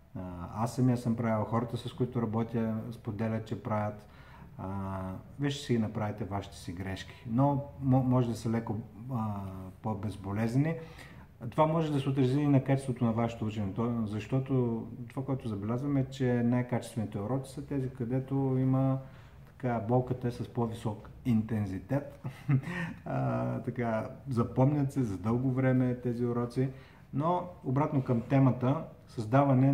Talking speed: 135 wpm